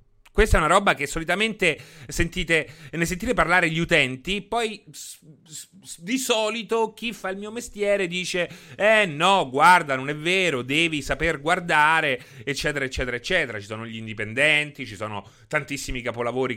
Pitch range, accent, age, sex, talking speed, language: 125-180 Hz, native, 30-49, male, 150 wpm, Italian